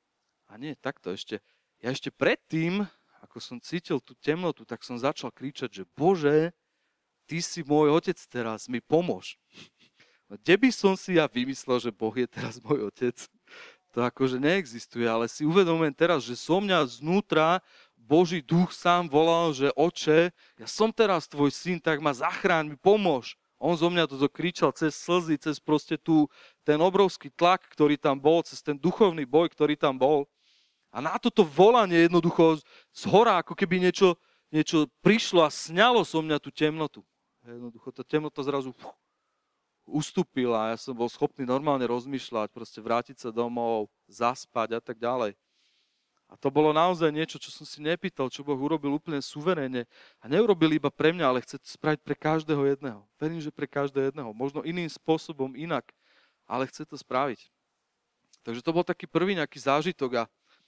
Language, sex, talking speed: Slovak, male, 170 wpm